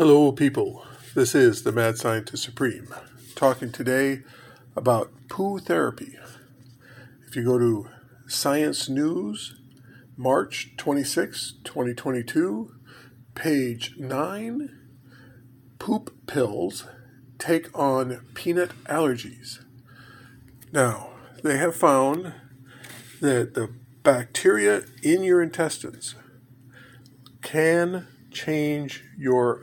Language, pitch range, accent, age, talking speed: English, 125-145 Hz, American, 50-69, 85 wpm